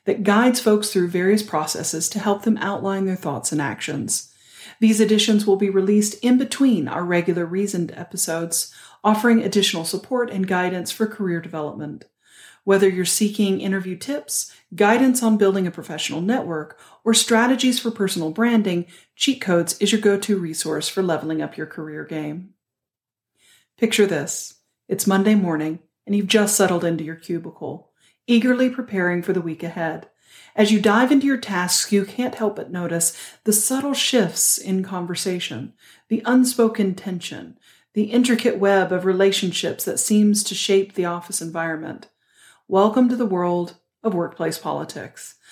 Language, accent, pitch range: English, American, 175-220 Hz